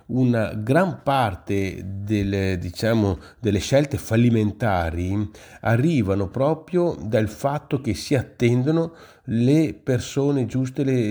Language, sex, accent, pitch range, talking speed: Italian, male, native, 100-135 Hz, 90 wpm